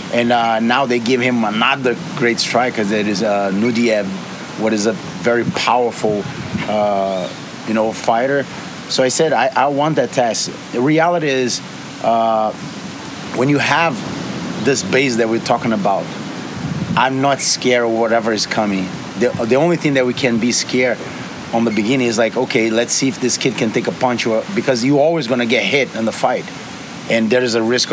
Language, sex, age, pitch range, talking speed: English, male, 30-49, 115-135 Hz, 190 wpm